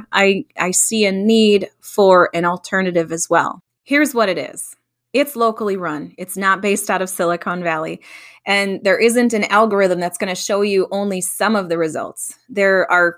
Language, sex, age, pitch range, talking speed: English, female, 20-39, 185-240 Hz, 185 wpm